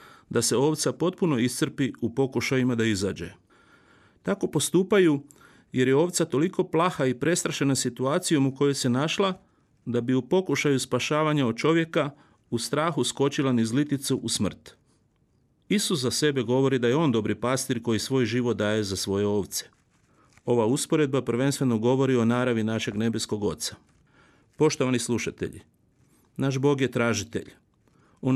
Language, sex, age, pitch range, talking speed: Croatian, male, 40-59, 115-140 Hz, 145 wpm